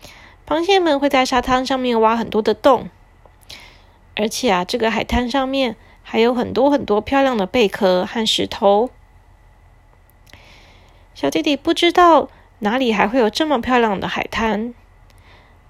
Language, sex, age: Chinese, female, 20-39